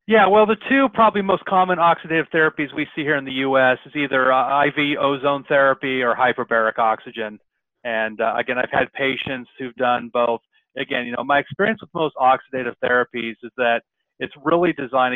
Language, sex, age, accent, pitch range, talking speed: English, male, 30-49, American, 115-135 Hz, 185 wpm